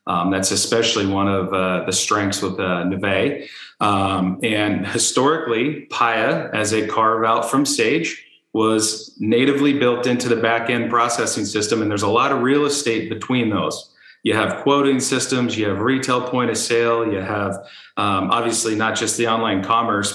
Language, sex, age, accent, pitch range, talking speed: English, male, 40-59, American, 100-120 Hz, 170 wpm